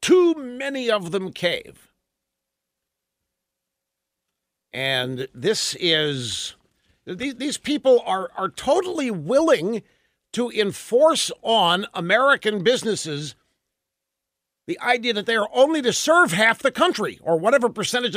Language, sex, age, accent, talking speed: English, male, 50-69, American, 110 wpm